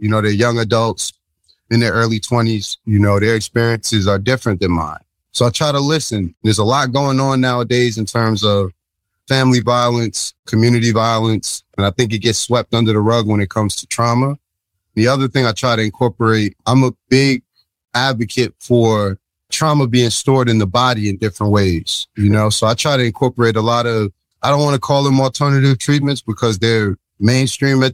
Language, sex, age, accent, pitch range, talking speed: English, male, 30-49, American, 105-120 Hz, 200 wpm